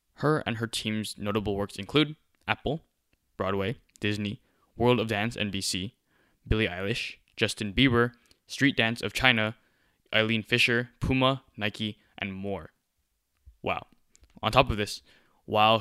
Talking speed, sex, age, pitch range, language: 130 wpm, male, 10-29, 105-125 Hz, English